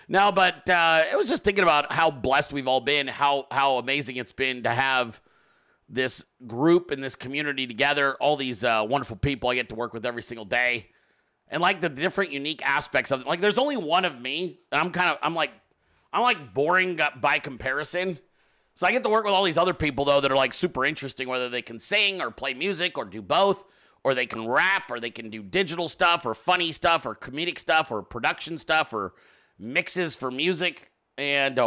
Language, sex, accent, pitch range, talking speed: English, male, American, 125-165 Hz, 215 wpm